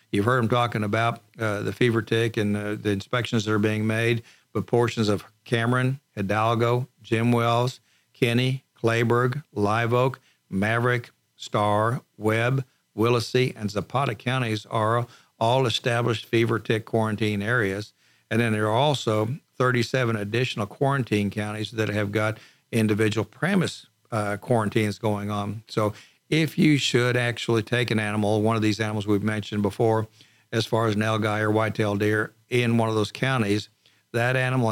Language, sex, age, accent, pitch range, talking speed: English, male, 50-69, American, 105-120 Hz, 155 wpm